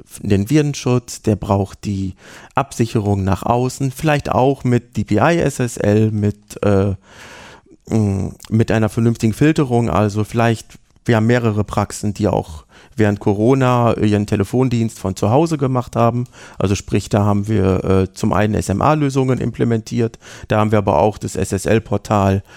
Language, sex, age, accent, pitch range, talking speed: German, male, 40-59, German, 105-125 Hz, 135 wpm